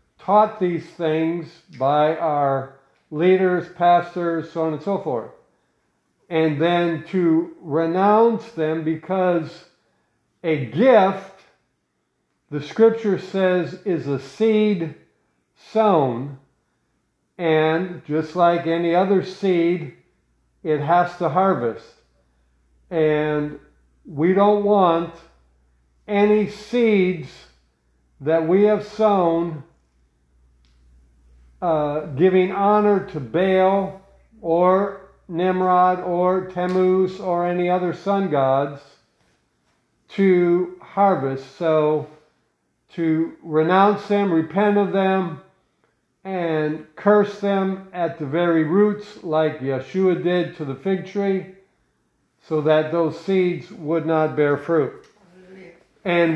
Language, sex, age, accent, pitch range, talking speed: English, male, 50-69, American, 155-190 Hz, 100 wpm